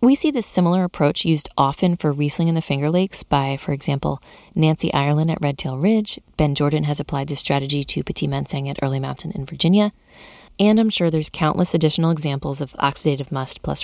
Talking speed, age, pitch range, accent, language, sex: 200 wpm, 20-39, 145-190 Hz, American, English, female